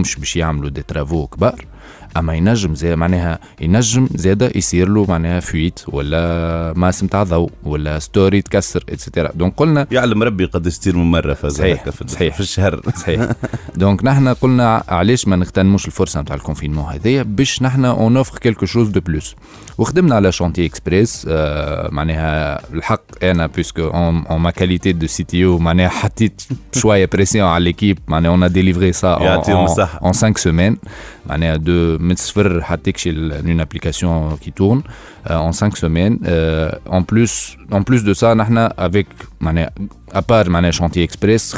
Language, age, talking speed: Arabic, 20-39, 155 wpm